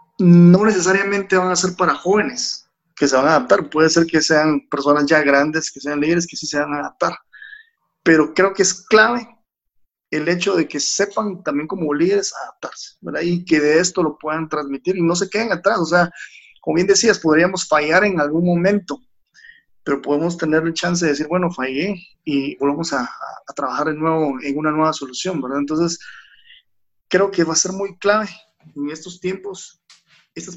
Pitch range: 150-185 Hz